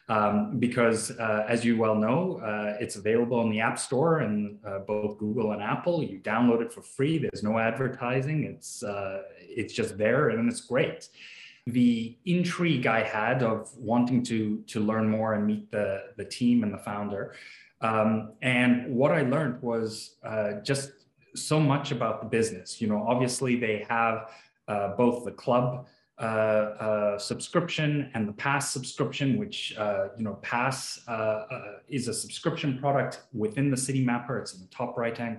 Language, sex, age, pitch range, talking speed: English, male, 30-49, 110-130 Hz, 175 wpm